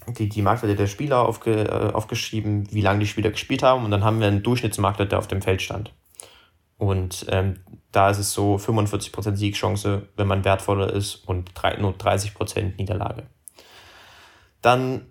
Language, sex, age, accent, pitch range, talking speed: German, male, 20-39, German, 100-115 Hz, 170 wpm